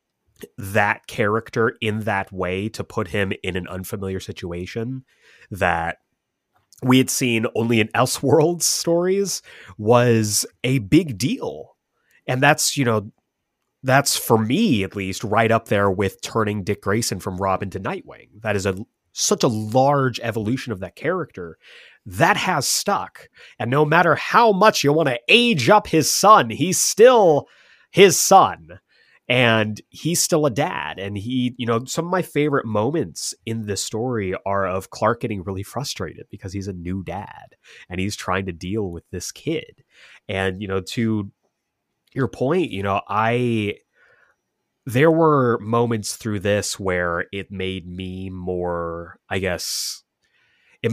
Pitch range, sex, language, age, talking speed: 95-125 Hz, male, English, 30-49, 155 wpm